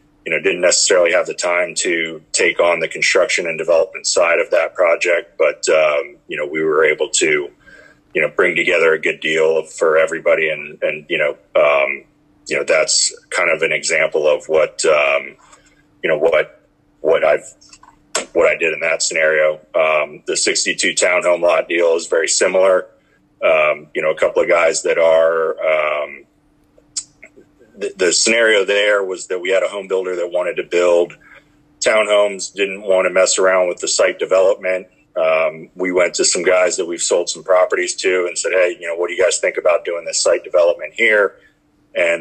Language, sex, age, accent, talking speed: English, male, 30-49, American, 190 wpm